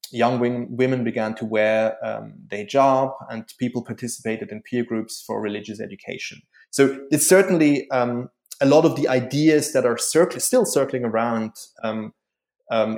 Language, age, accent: English, 20-39, German